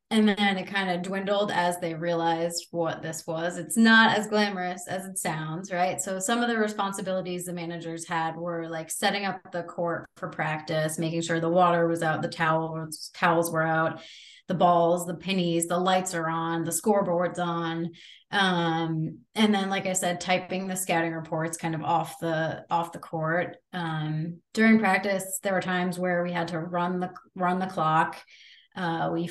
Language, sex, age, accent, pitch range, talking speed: English, female, 20-39, American, 165-190 Hz, 190 wpm